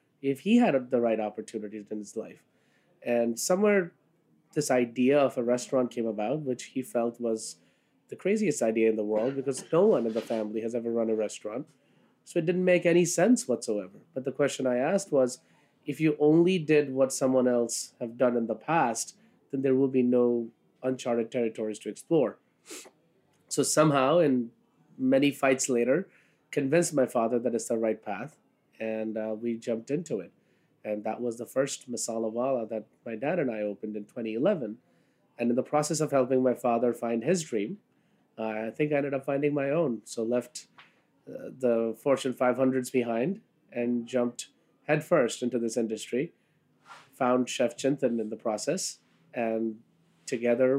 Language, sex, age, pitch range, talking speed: English, male, 30-49, 115-135 Hz, 175 wpm